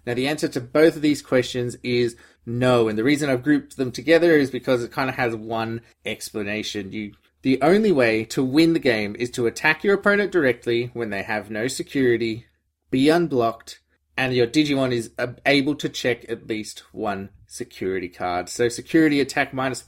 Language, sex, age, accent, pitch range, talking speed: English, male, 20-39, Australian, 120-150 Hz, 185 wpm